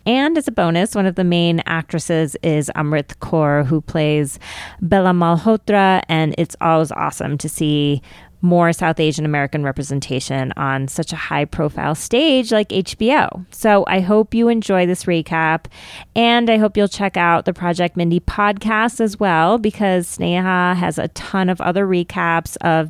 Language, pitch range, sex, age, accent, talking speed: English, 160-200 Hz, female, 30-49, American, 160 wpm